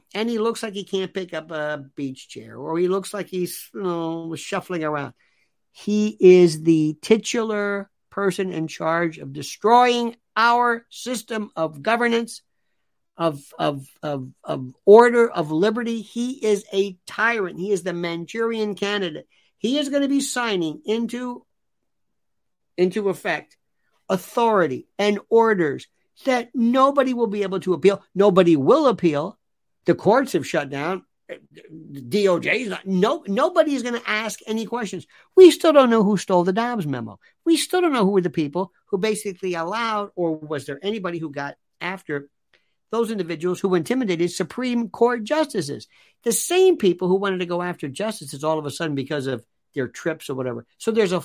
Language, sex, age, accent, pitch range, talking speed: English, male, 50-69, American, 165-230 Hz, 165 wpm